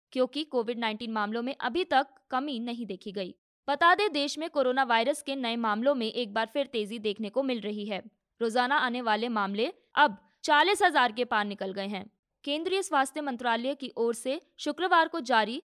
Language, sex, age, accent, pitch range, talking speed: Hindi, female, 20-39, native, 225-290 Hz, 195 wpm